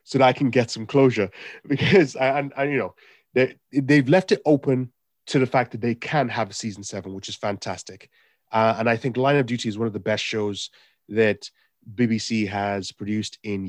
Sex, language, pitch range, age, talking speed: male, English, 110-130 Hz, 30-49, 205 wpm